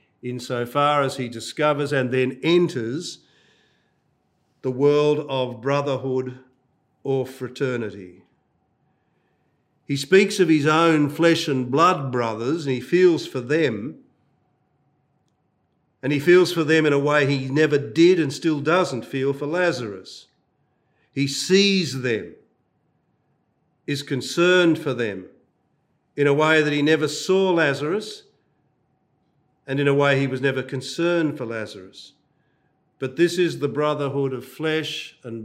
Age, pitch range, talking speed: 50-69, 130-160 Hz, 130 wpm